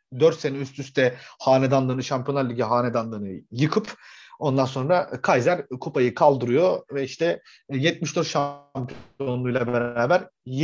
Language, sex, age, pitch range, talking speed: Turkish, male, 30-49, 130-180 Hz, 105 wpm